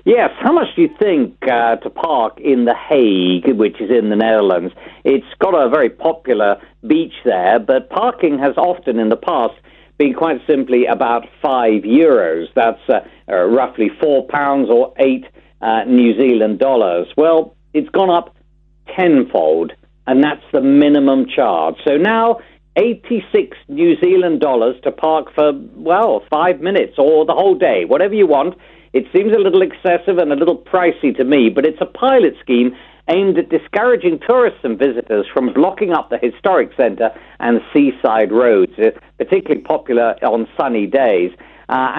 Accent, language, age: British, English, 50-69